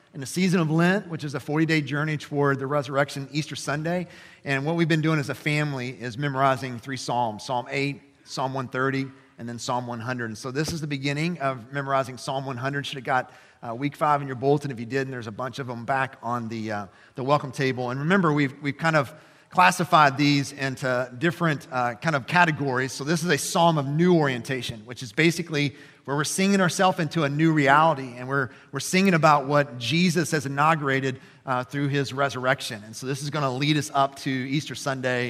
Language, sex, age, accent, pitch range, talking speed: English, male, 40-59, American, 135-170 Hz, 215 wpm